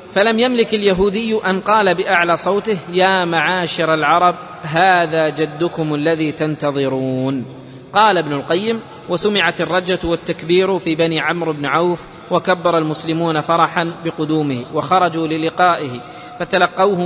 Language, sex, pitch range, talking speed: Arabic, male, 155-190 Hz, 115 wpm